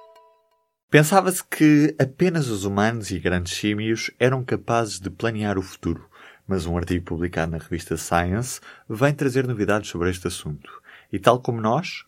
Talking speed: 155 wpm